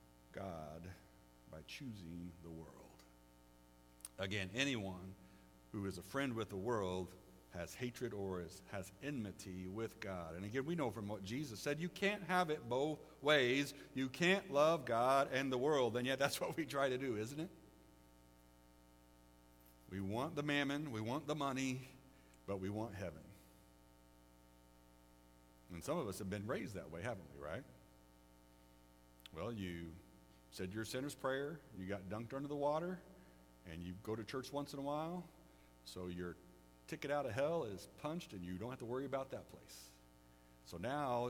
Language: English